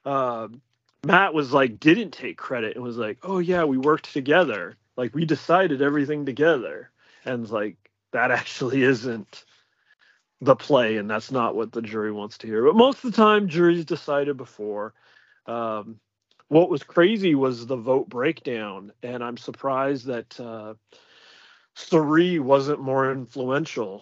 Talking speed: 150 wpm